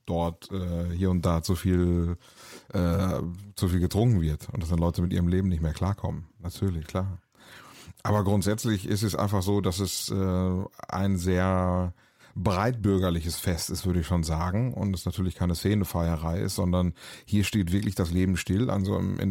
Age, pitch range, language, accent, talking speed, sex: 30-49, 90-105 Hz, German, German, 175 wpm, male